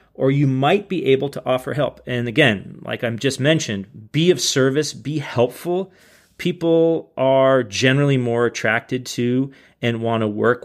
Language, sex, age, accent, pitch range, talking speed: English, male, 30-49, American, 115-155 Hz, 165 wpm